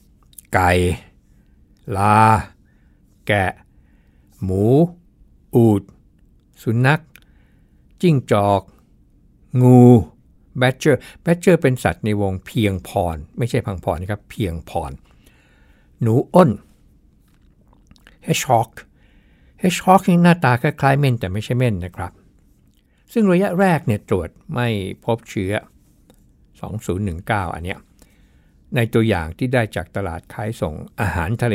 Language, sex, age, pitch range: Thai, male, 60-79, 90-120 Hz